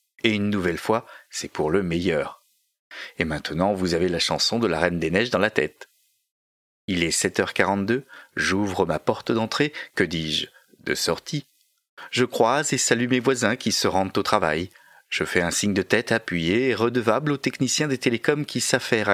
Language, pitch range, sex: French, 90-125 Hz, male